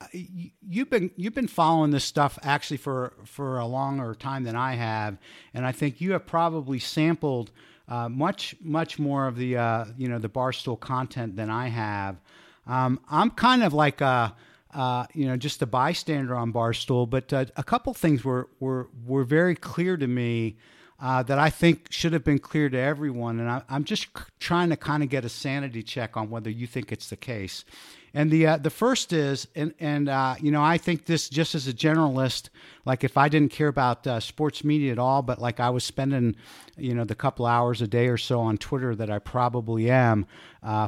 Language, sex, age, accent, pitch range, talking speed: English, male, 50-69, American, 120-150 Hz, 210 wpm